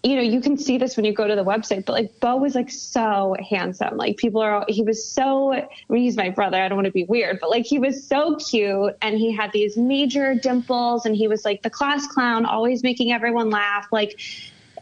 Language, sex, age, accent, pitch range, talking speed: English, female, 20-39, American, 215-255 Hz, 245 wpm